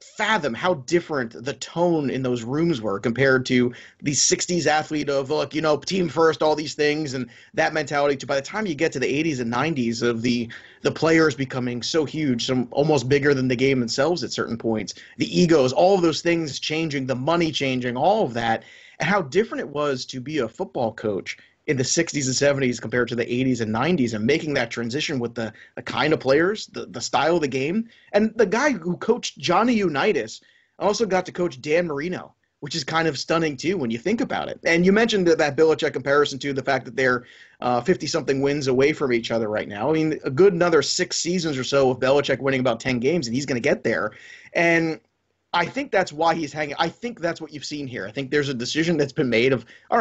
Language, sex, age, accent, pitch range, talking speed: English, male, 30-49, American, 130-170 Hz, 235 wpm